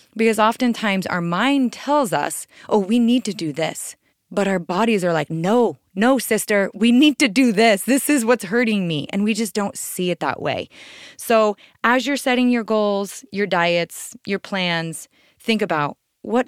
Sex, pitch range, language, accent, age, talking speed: female, 180-240 Hz, English, American, 20-39, 185 wpm